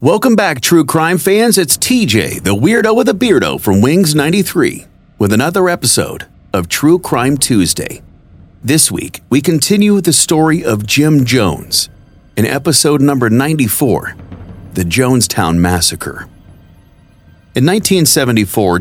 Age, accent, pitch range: 40-59, American, 95-145 Hz